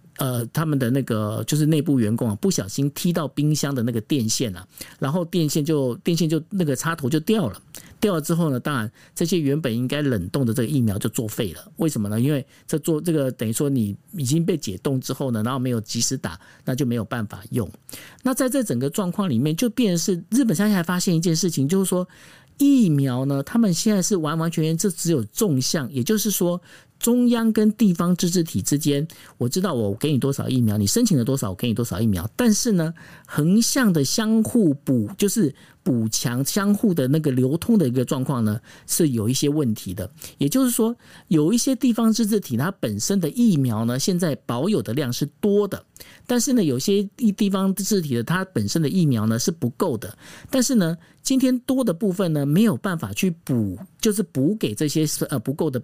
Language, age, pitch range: Chinese, 50-69, 125-195 Hz